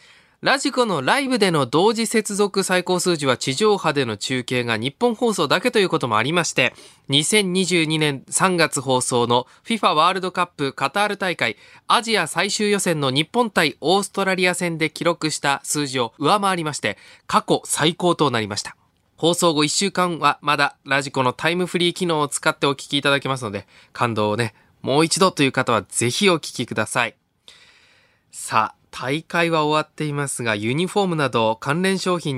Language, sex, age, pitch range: Japanese, male, 20-39, 125-185 Hz